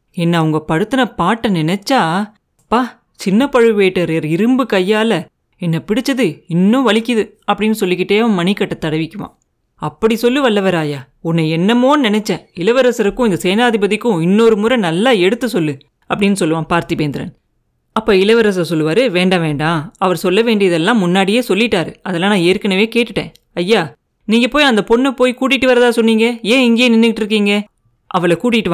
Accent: native